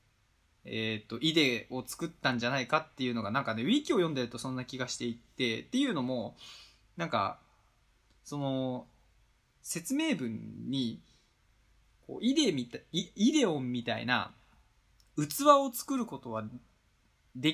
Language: Japanese